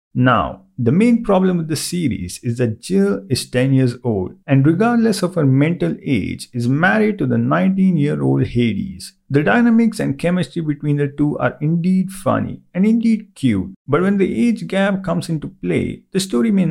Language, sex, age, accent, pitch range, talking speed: English, male, 50-69, Indian, 130-190 Hz, 180 wpm